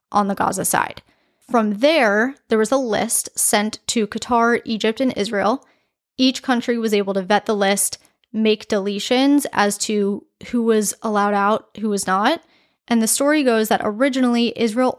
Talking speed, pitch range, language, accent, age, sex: 170 wpm, 205-240 Hz, English, American, 10-29, female